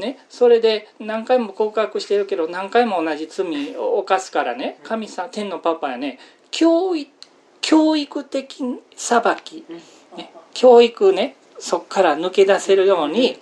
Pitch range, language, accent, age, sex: 165-270 Hz, Japanese, native, 40-59, male